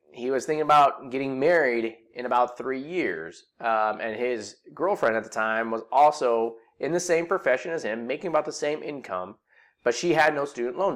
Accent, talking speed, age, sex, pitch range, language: American, 195 wpm, 30-49, male, 115-155 Hz, English